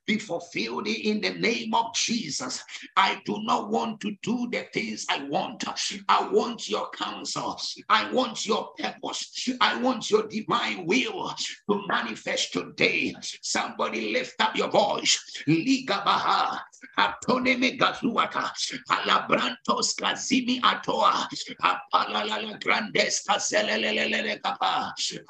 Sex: male